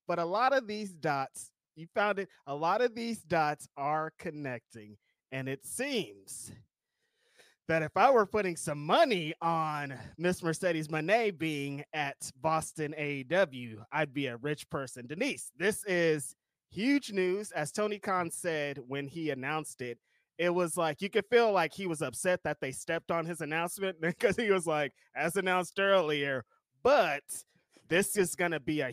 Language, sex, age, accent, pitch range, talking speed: English, male, 20-39, American, 140-185 Hz, 170 wpm